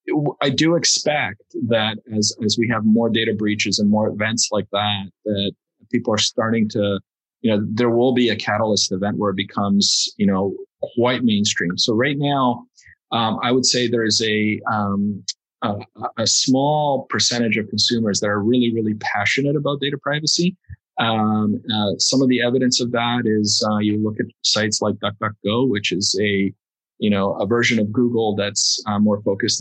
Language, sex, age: English, male, 30-49